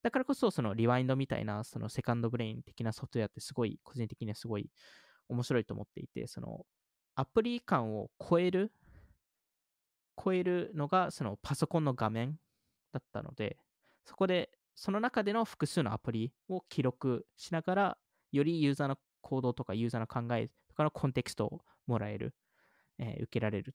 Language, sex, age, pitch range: Japanese, male, 20-39, 120-170 Hz